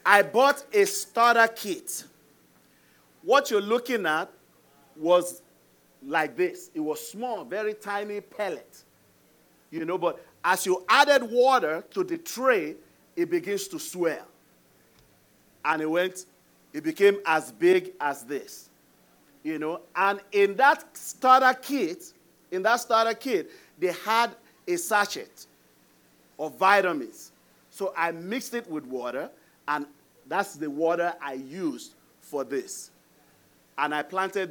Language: English